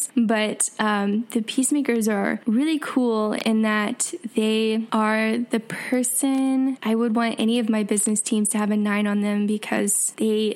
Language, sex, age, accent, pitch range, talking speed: English, female, 10-29, American, 205-245 Hz, 165 wpm